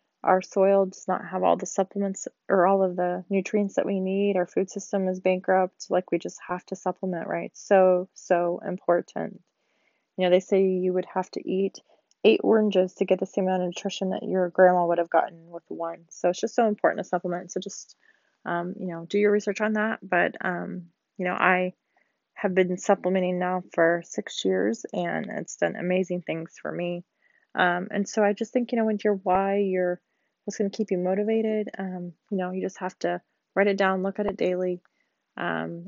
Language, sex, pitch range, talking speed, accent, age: English, female, 180-205 Hz, 210 wpm, American, 20-39